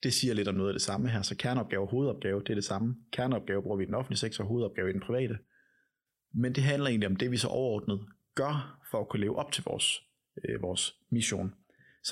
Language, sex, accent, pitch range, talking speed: Danish, male, native, 105-130 Hz, 240 wpm